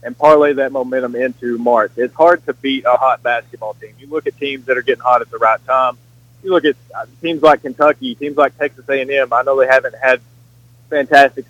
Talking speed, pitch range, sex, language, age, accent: 220 wpm, 120-140 Hz, male, English, 20-39, American